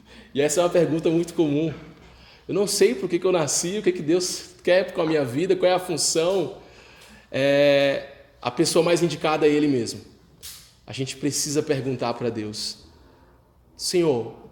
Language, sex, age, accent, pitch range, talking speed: Portuguese, male, 20-39, Brazilian, 130-165 Hz, 165 wpm